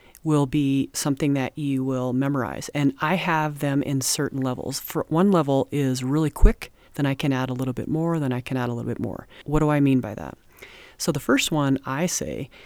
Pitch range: 130-155 Hz